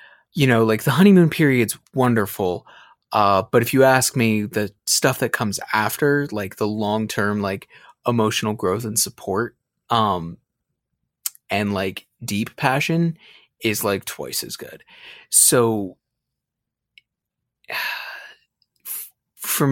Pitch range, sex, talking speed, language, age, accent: 105-145 Hz, male, 120 wpm, English, 20-39, American